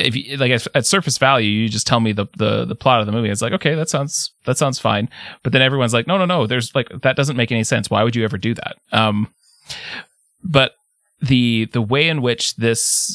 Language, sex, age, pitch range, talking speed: English, male, 30-49, 105-135 Hz, 235 wpm